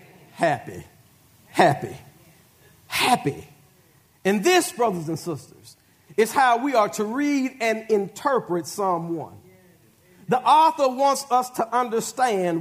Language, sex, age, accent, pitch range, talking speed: English, male, 50-69, American, 180-255 Hz, 115 wpm